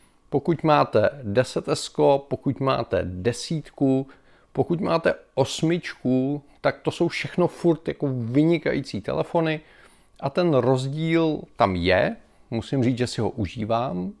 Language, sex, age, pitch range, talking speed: Czech, male, 30-49, 105-140 Hz, 120 wpm